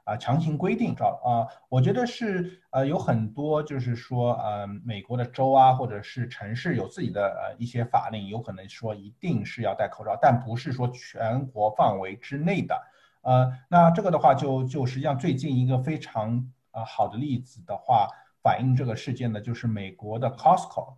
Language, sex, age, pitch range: Chinese, male, 50-69, 115-135 Hz